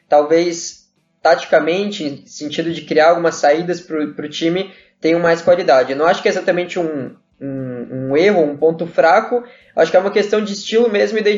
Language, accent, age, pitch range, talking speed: Portuguese, Brazilian, 10-29, 165-190 Hz, 195 wpm